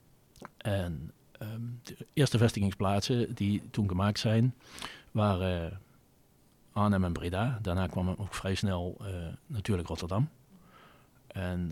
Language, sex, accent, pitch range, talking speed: Dutch, male, Dutch, 95-115 Hz, 120 wpm